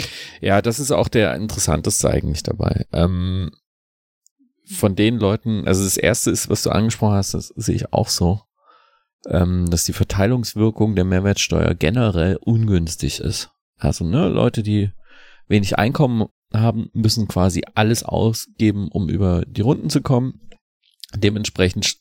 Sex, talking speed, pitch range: male, 135 wpm, 90-115 Hz